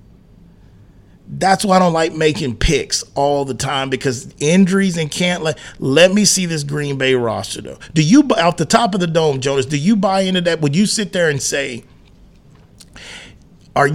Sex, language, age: male, English, 40-59